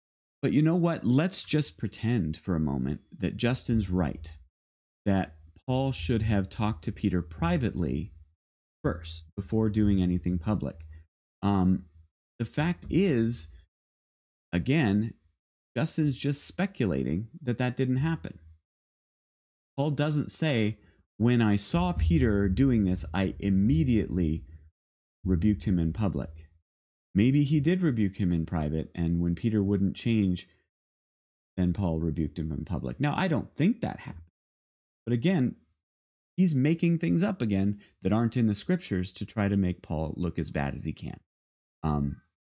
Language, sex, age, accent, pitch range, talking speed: English, male, 30-49, American, 80-115 Hz, 145 wpm